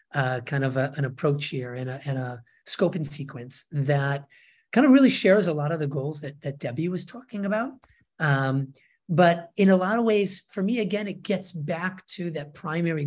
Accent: American